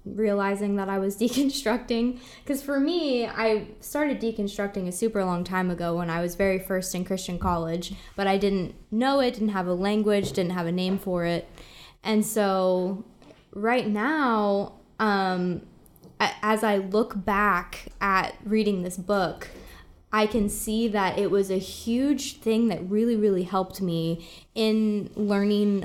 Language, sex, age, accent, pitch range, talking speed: English, female, 20-39, American, 180-215 Hz, 160 wpm